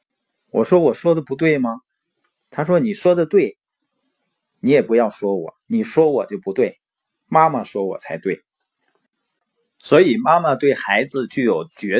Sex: male